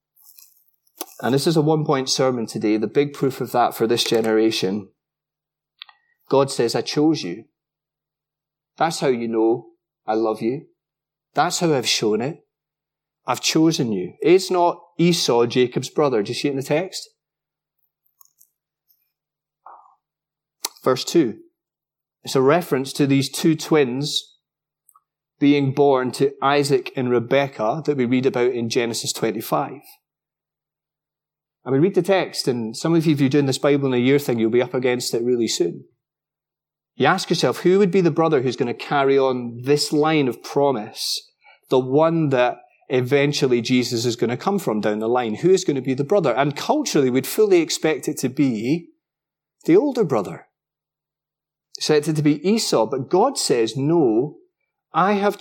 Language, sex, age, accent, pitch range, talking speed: English, male, 30-49, British, 130-165 Hz, 165 wpm